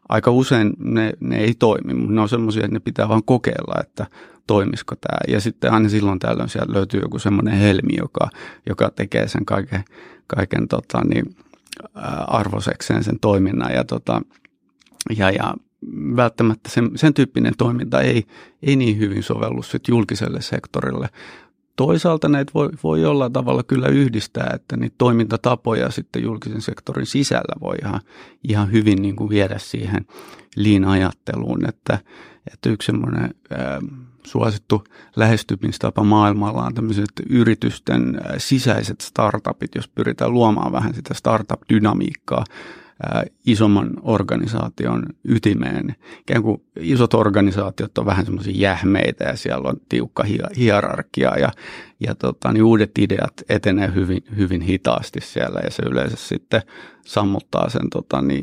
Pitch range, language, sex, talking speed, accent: 95-115 Hz, Finnish, male, 130 wpm, native